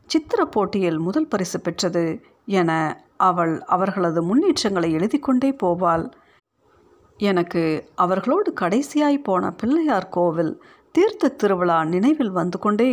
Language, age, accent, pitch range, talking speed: Tamil, 50-69, native, 175-270 Hz, 105 wpm